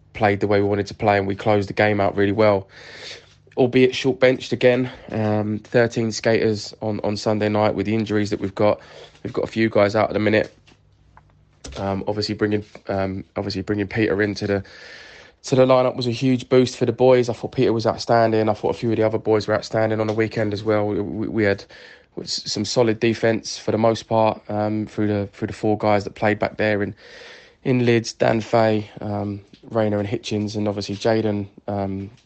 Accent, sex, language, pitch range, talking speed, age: British, male, English, 105-115 Hz, 210 wpm, 20-39